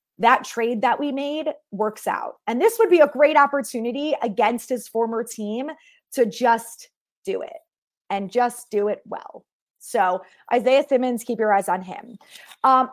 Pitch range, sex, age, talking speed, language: 205-265 Hz, female, 20-39, 165 wpm, English